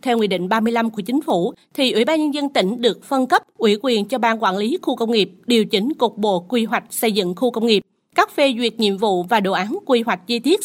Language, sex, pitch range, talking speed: Vietnamese, female, 200-255 Hz, 270 wpm